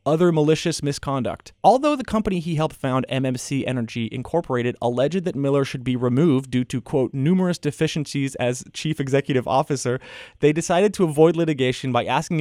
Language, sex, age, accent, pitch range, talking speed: English, male, 30-49, American, 130-175 Hz, 165 wpm